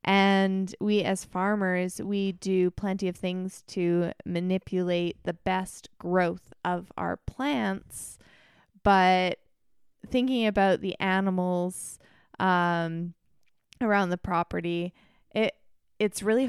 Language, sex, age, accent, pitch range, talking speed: English, female, 20-39, American, 185-230 Hz, 105 wpm